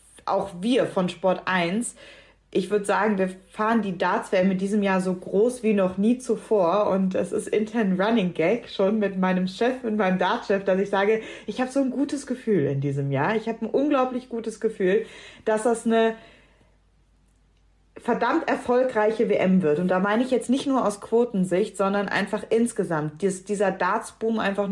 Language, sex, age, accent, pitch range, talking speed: German, female, 30-49, German, 175-215 Hz, 180 wpm